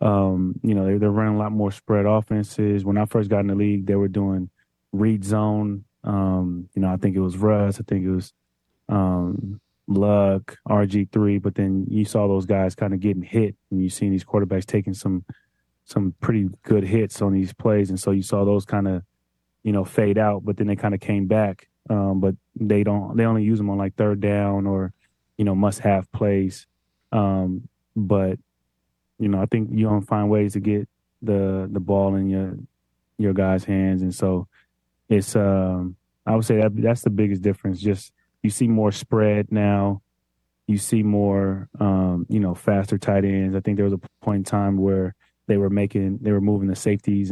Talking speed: 205 wpm